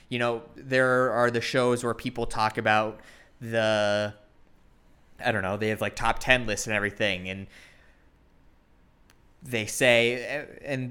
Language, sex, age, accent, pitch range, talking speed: English, male, 20-39, American, 105-125 Hz, 145 wpm